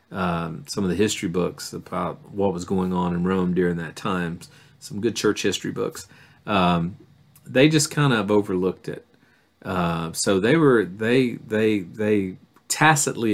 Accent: American